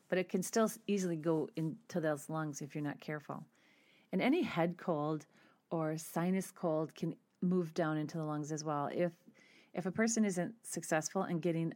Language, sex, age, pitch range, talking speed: English, female, 40-59, 160-195 Hz, 185 wpm